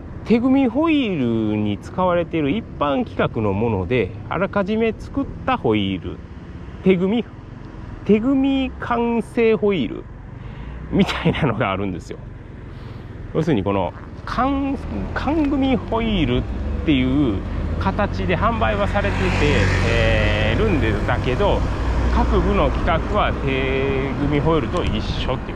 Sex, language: male, Japanese